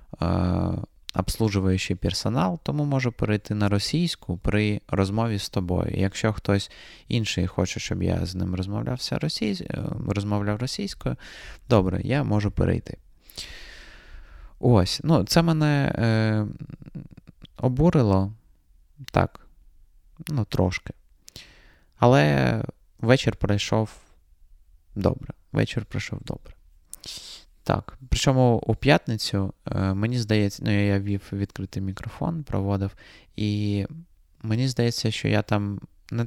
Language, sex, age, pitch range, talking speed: Ukrainian, male, 20-39, 95-115 Hz, 100 wpm